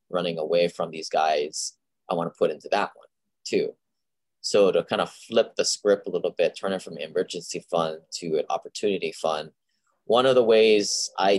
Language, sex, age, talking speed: English, male, 20-39, 200 wpm